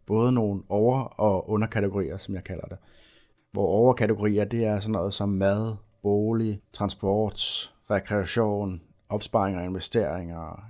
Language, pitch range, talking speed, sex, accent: Danish, 90-110 Hz, 130 wpm, male, native